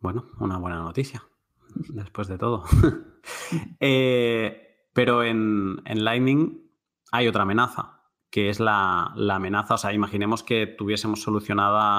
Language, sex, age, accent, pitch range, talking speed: Spanish, male, 20-39, Spanish, 95-110 Hz, 130 wpm